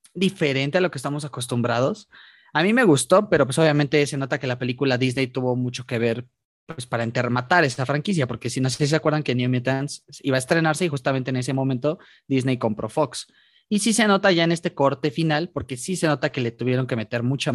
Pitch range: 125-165 Hz